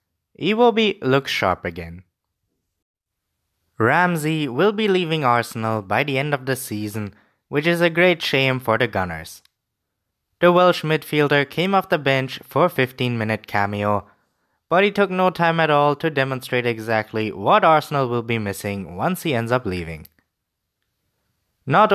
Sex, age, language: male, 20-39, English